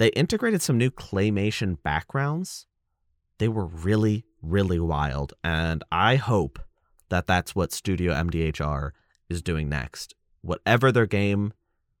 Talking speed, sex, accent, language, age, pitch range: 125 wpm, male, American, English, 30-49, 80-105 Hz